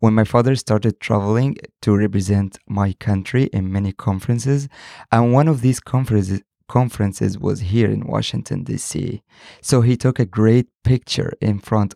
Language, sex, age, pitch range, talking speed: English, male, 20-39, 105-135 Hz, 150 wpm